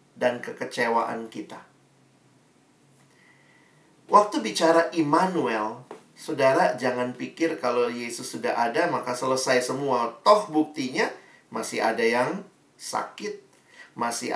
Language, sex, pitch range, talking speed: Indonesian, male, 120-165 Hz, 95 wpm